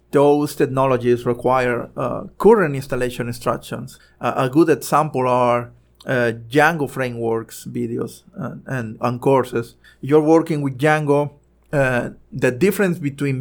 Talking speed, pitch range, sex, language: 130 wpm, 125-155 Hz, male, English